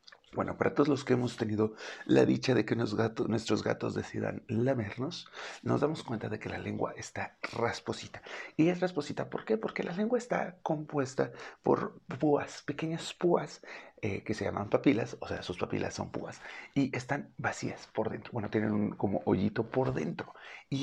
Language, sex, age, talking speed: Spanish, male, 50-69, 180 wpm